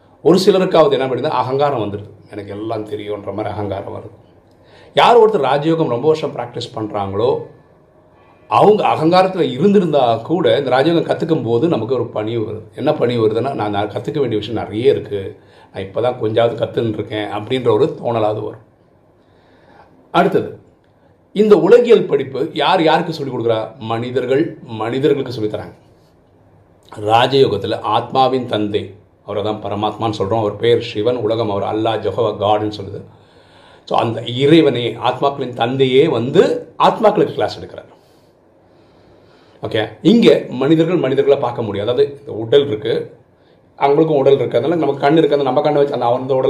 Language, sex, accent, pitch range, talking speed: Tamil, male, native, 105-150 Hz, 90 wpm